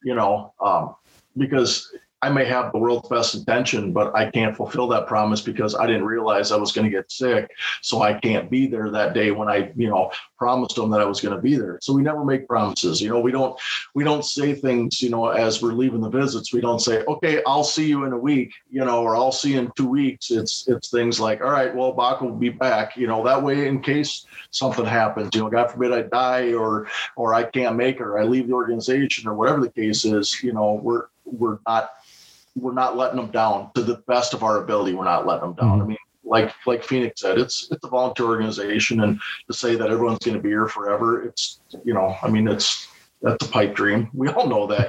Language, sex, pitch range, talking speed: English, male, 110-125 Hz, 245 wpm